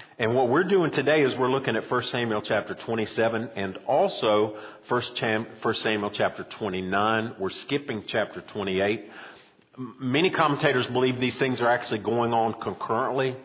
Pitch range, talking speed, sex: 110-135 Hz, 145 wpm, male